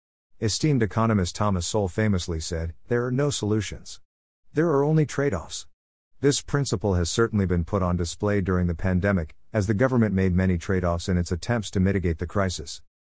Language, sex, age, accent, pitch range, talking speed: English, male, 50-69, American, 85-115 Hz, 175 wpm